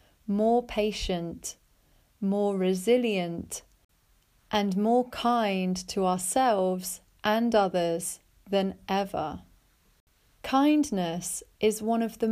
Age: 30-49